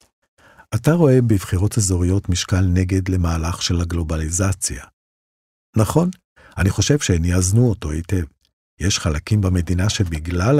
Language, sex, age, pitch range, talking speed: Hebrew, male, 50-69, 85-110 Hz, 115 wpm